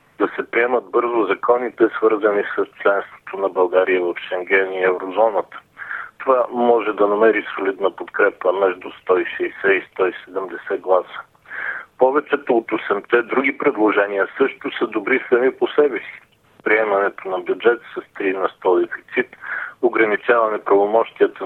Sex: male